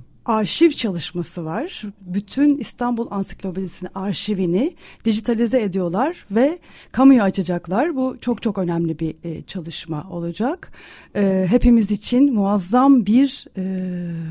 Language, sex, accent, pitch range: Turkish, female, native, 190-245 Hz